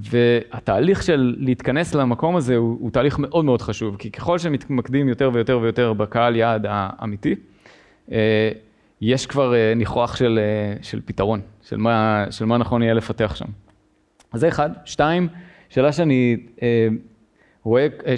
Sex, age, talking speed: male, 20-39, 135 wpm